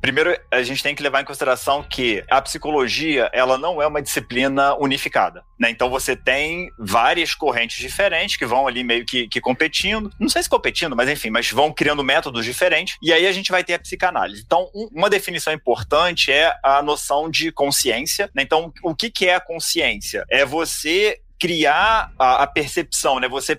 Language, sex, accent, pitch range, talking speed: Portuguese, male, Brazilian, 140-175 Hz, 190 wpm